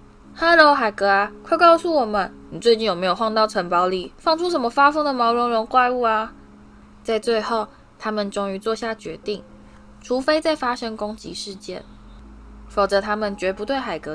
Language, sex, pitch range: Chinese, female, 175-230 Hz